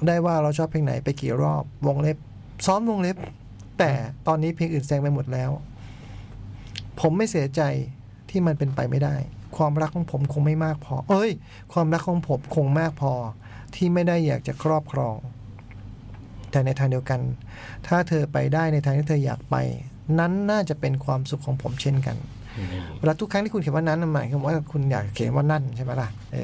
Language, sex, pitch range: Thai, male, 120-160 Hz